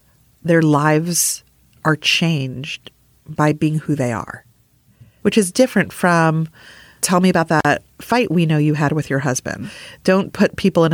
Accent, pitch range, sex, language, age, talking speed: American, 140-165 Hz, female, English, 40-59, 160 wpm